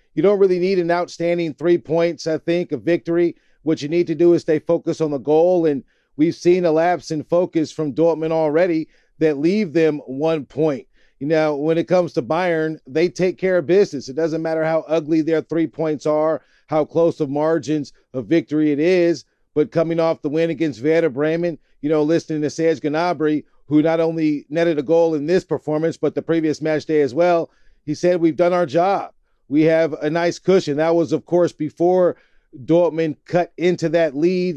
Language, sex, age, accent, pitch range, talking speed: English, male, 40-59, American, 155-175 Hz, 205 wpm